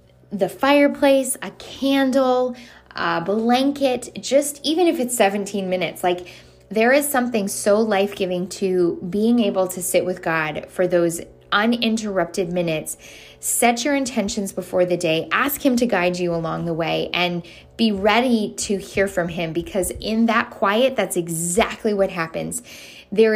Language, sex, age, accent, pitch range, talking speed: English, female, 10-29, American, 175-230 Hz, 150 wpm